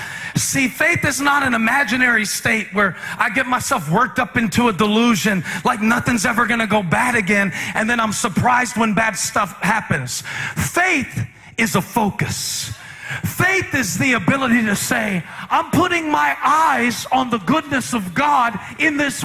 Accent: American